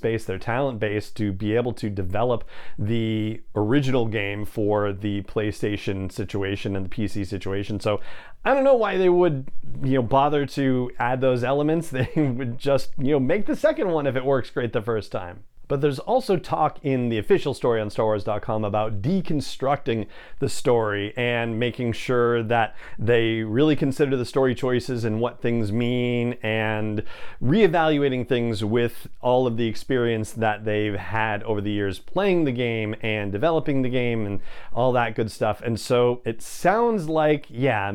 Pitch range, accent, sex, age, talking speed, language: 105-135 Hz, American, male, 40-59, 175 wpm, English